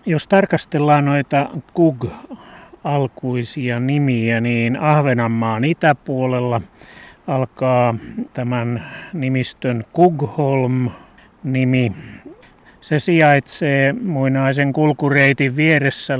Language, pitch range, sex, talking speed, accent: Finnish, 125-150 Hz, male, 65 wpm, native